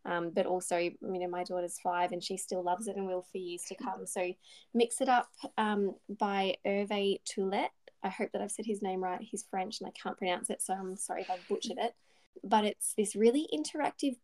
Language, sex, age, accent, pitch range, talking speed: English, female, 20-39, Australian, 185-210 Hz, 230 wpm